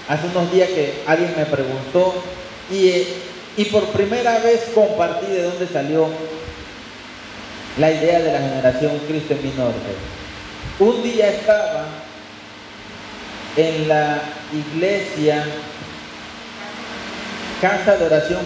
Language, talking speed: Spanish, 110 wpm